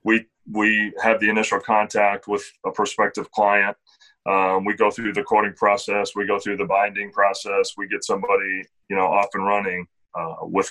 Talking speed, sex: 185 wpm, male